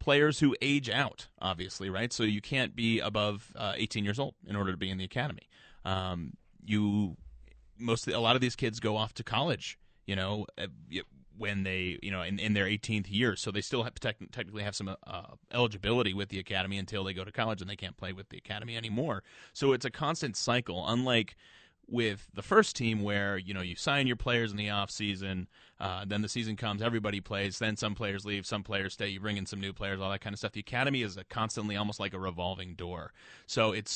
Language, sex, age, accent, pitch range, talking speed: English, male, 30-49, American, 100-120 Hz, 225 wpm